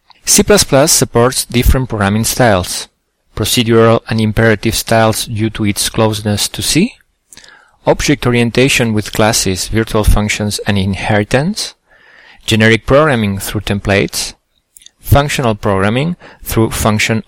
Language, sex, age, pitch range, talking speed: English, male, 40-59, 105-125 Hz, 110 wpm